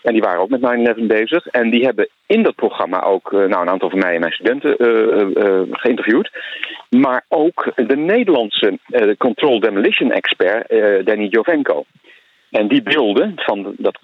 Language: Dutch